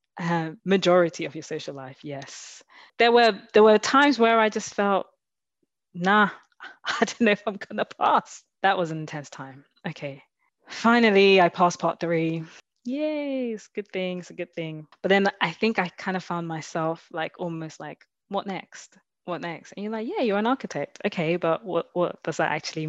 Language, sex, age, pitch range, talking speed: English, female, 20-39, 155-200 Hz, 195 wpm